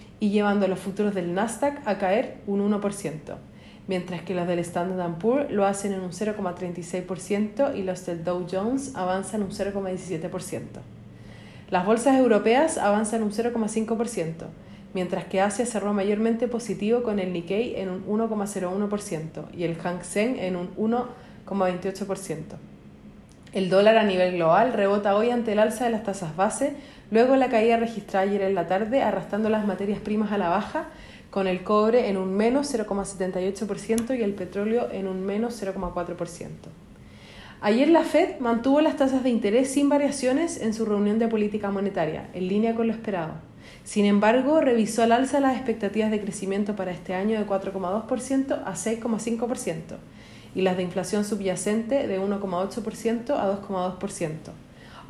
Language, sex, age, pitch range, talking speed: Spanish, female, 40-59, 185-230 Hz, 155 wpm